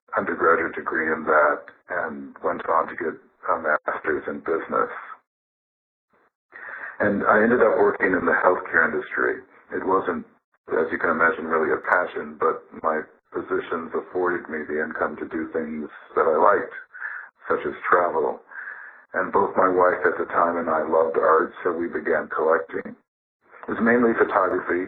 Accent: American